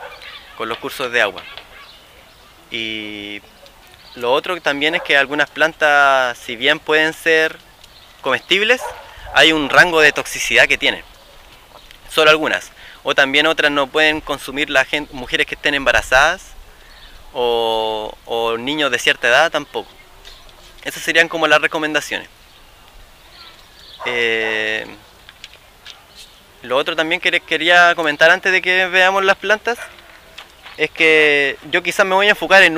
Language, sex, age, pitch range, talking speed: Spanish, male, 20-39, 135-180 Hz, 135 wpm